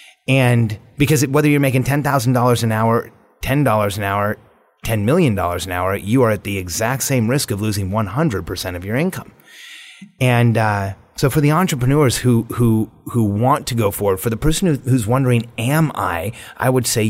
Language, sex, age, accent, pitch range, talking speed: English, male, 30-49, American, 105-140 Hz, 185 wpm